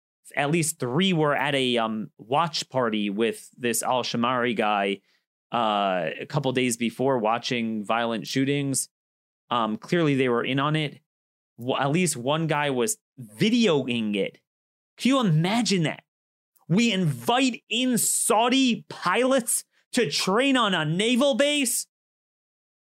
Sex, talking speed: male, 135 wpm